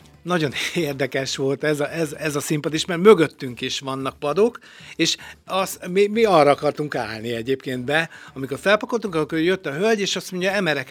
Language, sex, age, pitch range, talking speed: Hungarian, male, 60-79, 135-180 Hz, 185 wpm